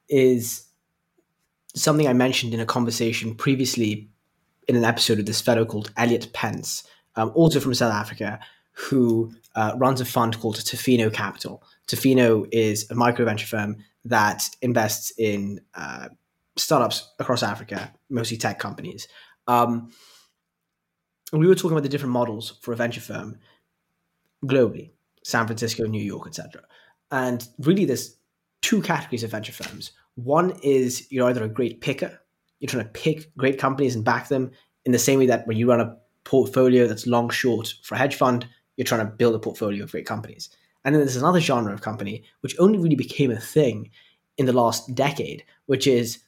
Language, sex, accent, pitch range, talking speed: English, male, British, 110-130 Hz, 170 wpm